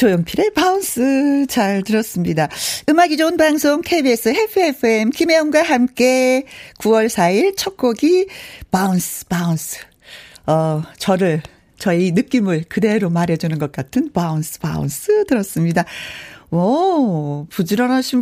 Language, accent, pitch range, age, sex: Korean, native, 175-280 Hz, 40-59, female